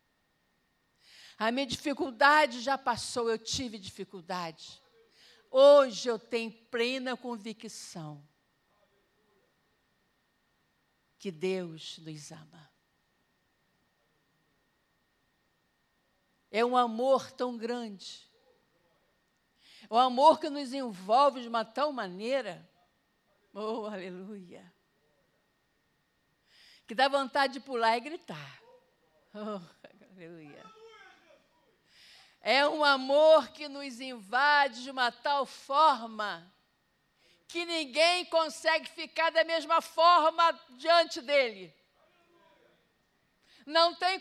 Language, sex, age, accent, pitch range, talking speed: Portuguese, female, 50-69, Brazilian, 230-345 Hz, 85 wpm